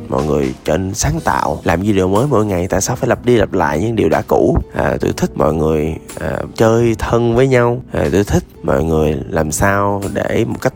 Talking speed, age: 230 wpm, 20-39